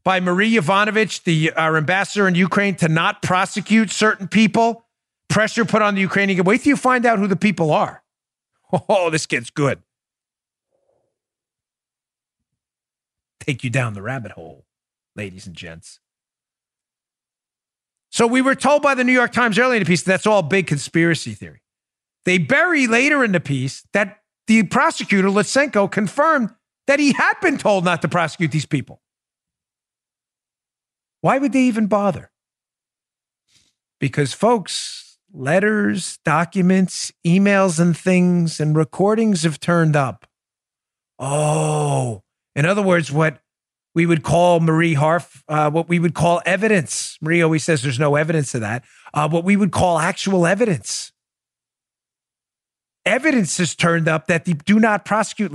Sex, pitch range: male, 155-210 Hz